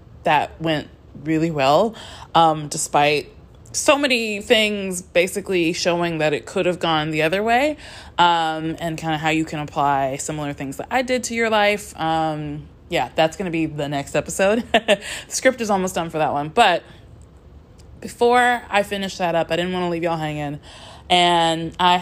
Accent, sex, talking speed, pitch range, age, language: American, female, 175 wpm, 155-195 Hz, 20-39, English